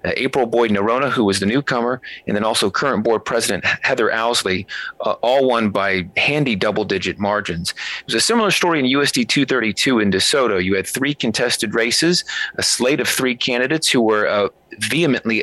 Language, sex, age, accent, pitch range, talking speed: English, male, 30-49, American, 105-130 Hz, 185 wpm